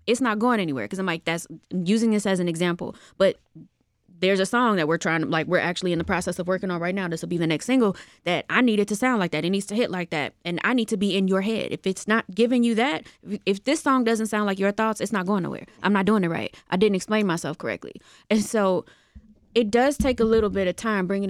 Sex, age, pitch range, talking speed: female, 20-39, 175-220 Hz, 280 wpm